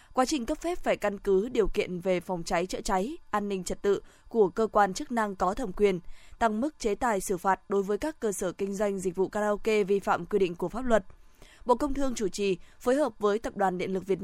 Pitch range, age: 190-235 Hz, 20-39